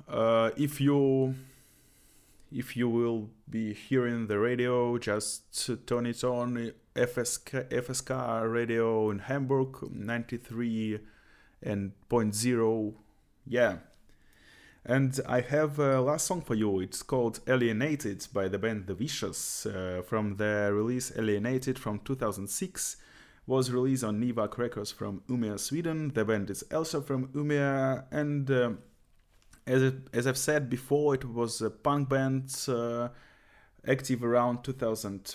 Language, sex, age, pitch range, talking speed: English, male, 20-39, 105-130 Hz, 130 wpm